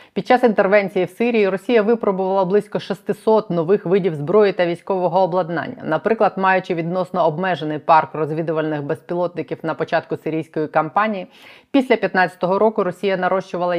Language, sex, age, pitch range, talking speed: Ukrainian, female, 20-39, 170-200 Hz, 135 wpm